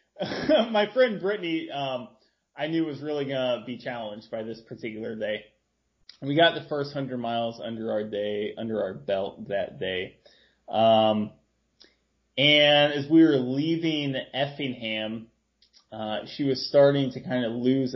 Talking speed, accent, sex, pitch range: 150 wpm, American, male, 115-150 Hz